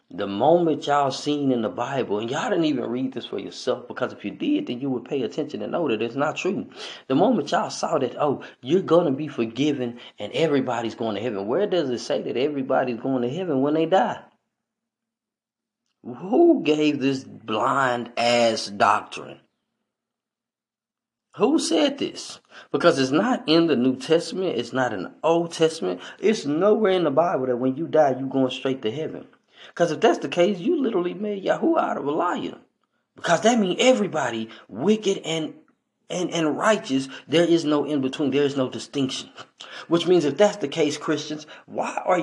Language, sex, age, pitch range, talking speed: English, male, 20-39, 130-210 Hz, 190 wpm